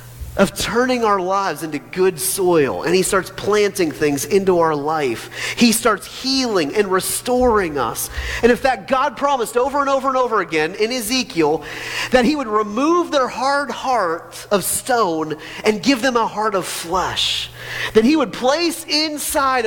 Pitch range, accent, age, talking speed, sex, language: 195-275 Hz, American, 40-59, 170 wpm, male, English